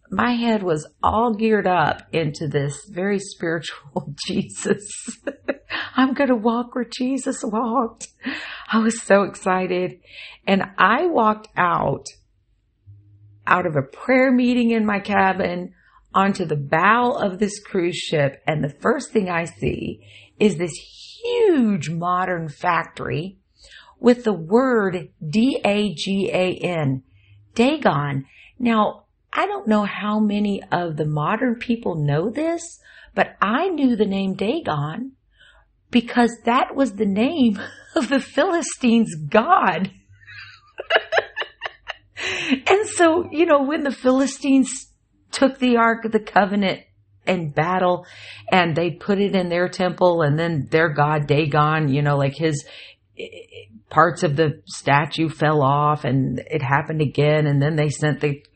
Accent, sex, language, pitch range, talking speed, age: American, female, English, 150-235 Hz, 135 wpm, 50-69